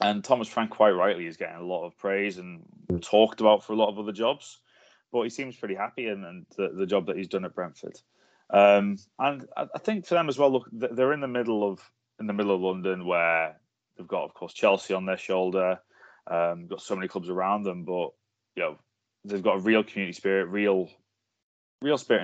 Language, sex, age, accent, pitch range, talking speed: English, male, 20-39, British, 95-110 Hz, 220 wpm